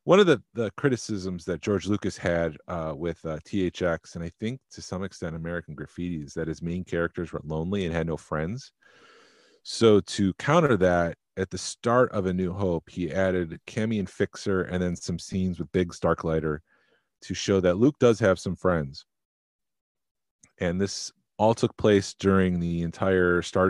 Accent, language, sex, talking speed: American, English, male, 185 wpm